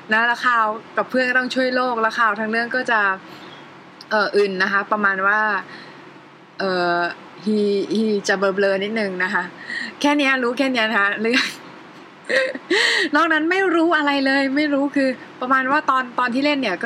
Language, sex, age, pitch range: Thai, female, 20-39, 205-260 Hz